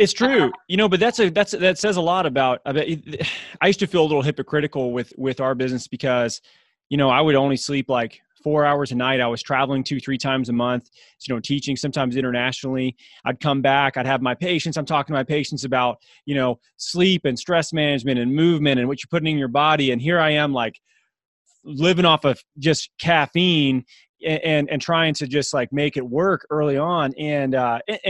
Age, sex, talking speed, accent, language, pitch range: 20-39, male, 215 wpm, American, English, 125-155 Hz